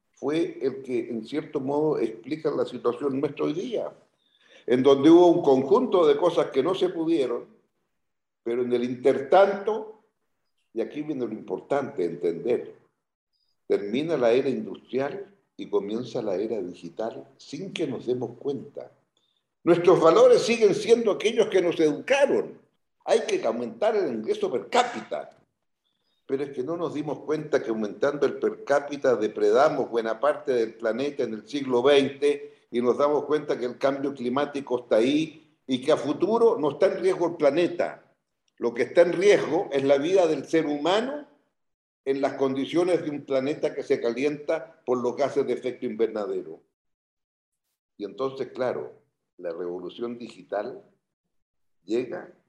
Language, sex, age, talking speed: Portuguese, male, 60-79, 155 wpm